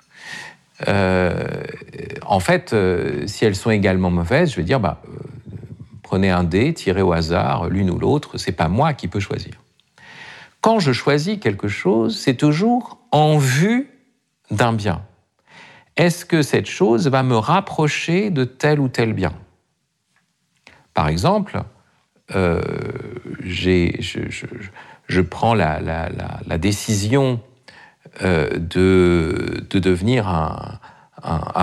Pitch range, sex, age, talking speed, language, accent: 95-140 Hz, male, 50-69, 135 wpm, French, French